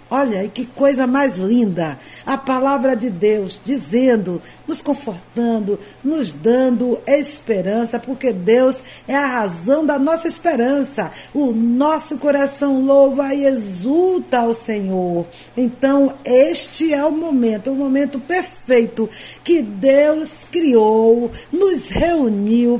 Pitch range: 225-285 Hz